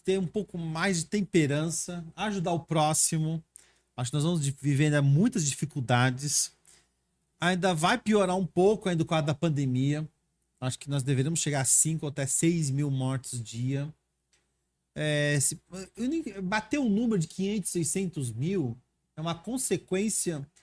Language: Portuguese